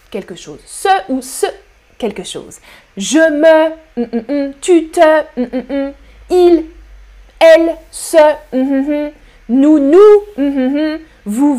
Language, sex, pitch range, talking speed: French, female, 235-330 Hz, 90 wpm